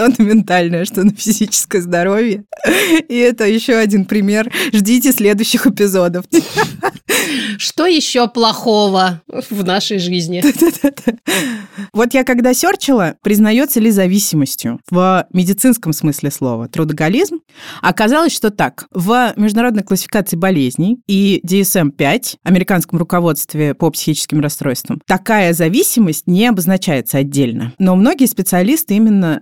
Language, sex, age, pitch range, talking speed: Russian, female, 20-39, 165-220 Hz, 110 wpm